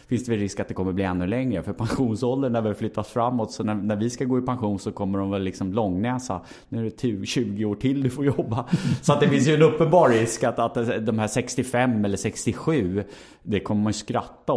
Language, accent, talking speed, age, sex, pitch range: Swedish, Norwegian, 240 wpm, 30-49, male, 100-125 Hz